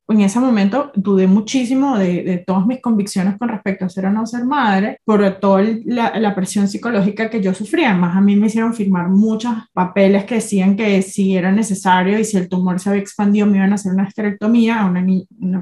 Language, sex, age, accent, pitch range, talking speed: Spanish, female, 20-39, Colombian, 190-230 Hz, 220 wpm